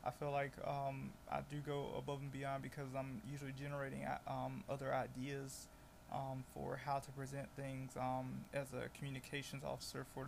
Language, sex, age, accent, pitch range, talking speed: English, male, 20-39, American, 130-140 Hz, 170 wpm